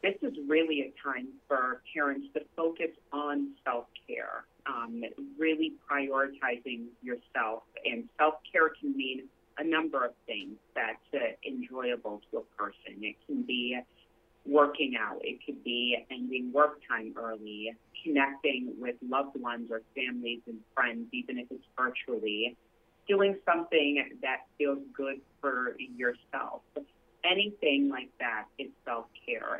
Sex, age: female, 30-49